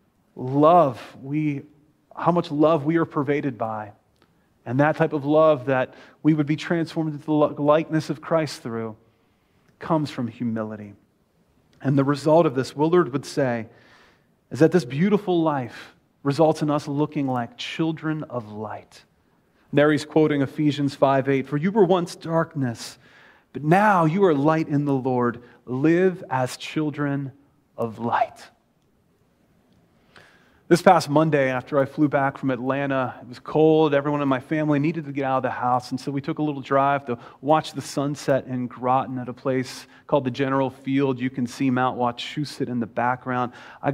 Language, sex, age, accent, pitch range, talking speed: English, male, 30-49, American, 130-155 Hz, 170 wpm